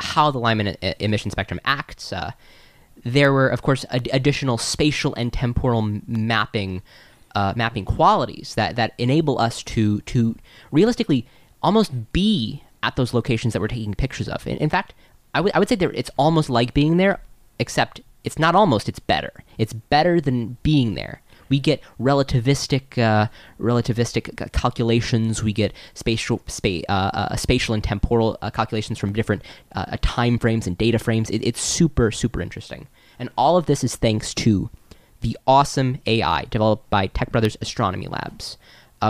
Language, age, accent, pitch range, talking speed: English, 20-39, American, 110-130 Hz, 165 wpm